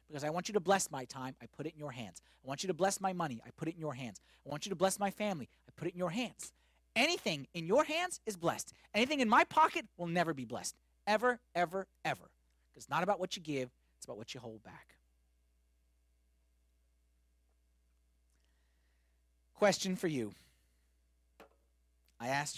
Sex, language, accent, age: male, English, American, 30-49